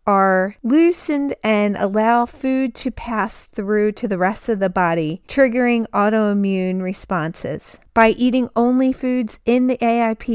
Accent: American